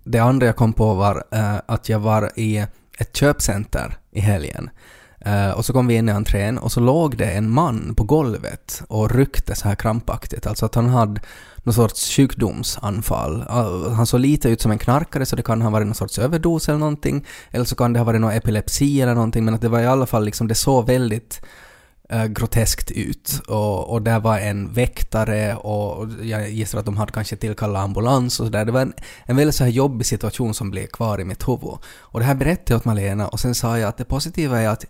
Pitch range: 110-130 Hz